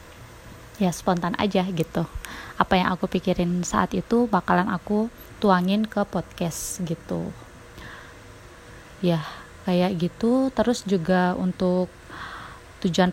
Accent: native